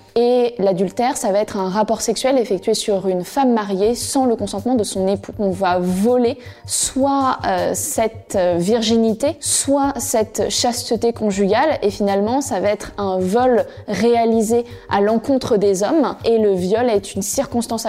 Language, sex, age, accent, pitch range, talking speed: French, female, 20-39, French, 205-245 Hz, 160 wpm